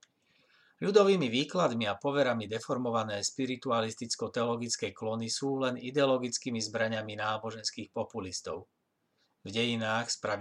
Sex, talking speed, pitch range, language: male, 90 wpm, 105-120 Hz, Slovak